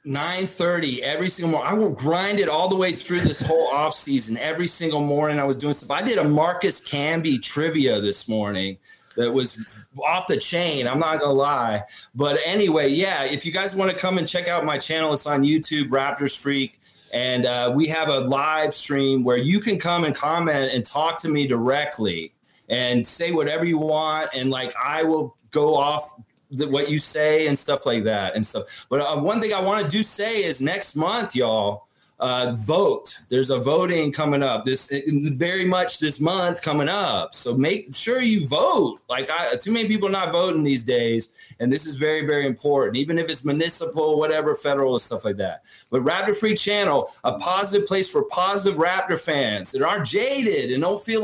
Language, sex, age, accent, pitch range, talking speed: English, male, 30-49, American, 140-185 Hz, 200 wpm